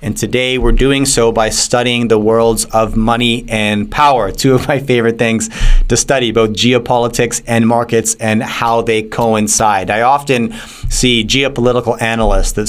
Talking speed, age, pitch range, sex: 160 wpm, 30-49, 110-125 Hz, male